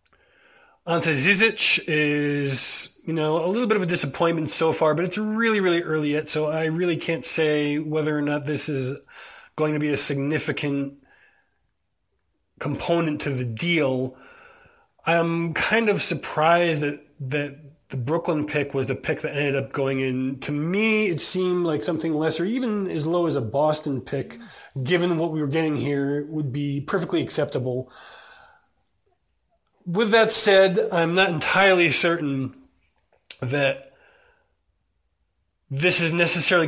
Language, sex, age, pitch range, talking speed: English, male, 20-39, 145-175 Hz, 145 wpm